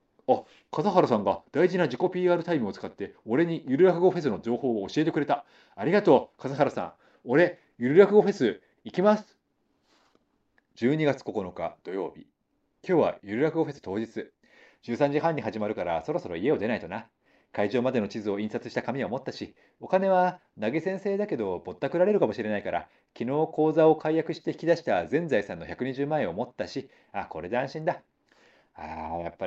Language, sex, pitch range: Japanese, male, 115-180 Hz